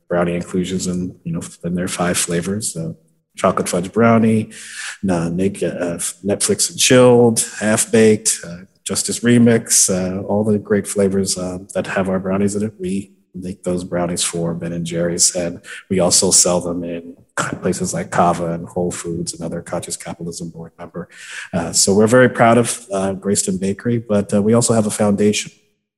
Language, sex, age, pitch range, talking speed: English, male, 40-59, 85-105 Hz, 180 wpm